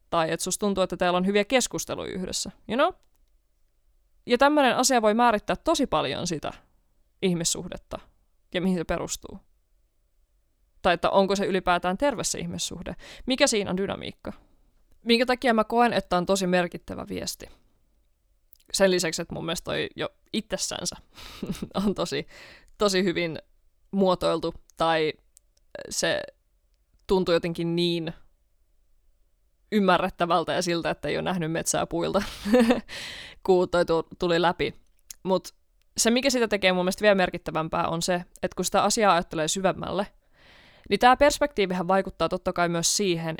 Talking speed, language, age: 135 wpm, Finnish, 20-39